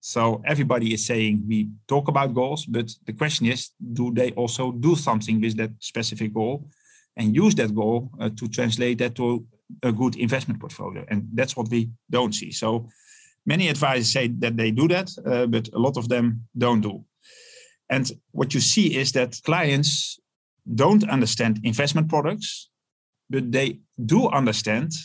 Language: English